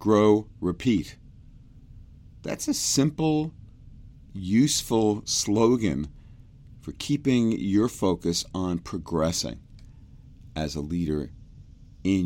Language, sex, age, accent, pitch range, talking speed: English, male, 40-59, American, 80-115 Hz, 85 wpm